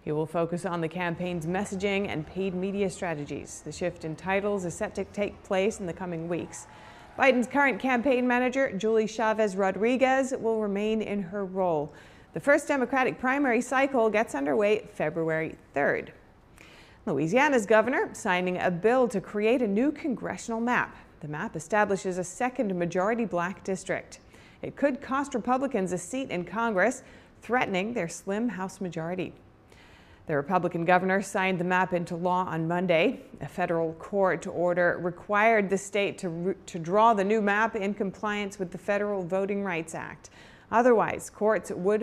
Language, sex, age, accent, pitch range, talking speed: English, female, 40-59, American, 175-220 Hz, 160 wpm